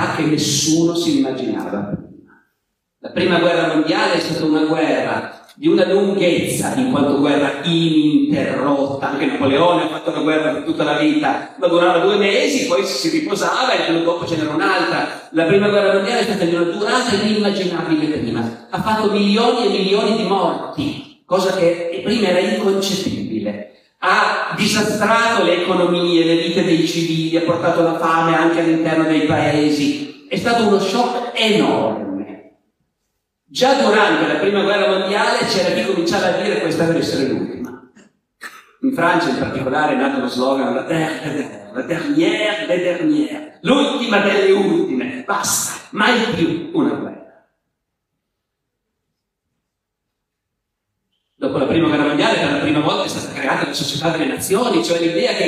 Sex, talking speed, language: male, 150 wpm, Italian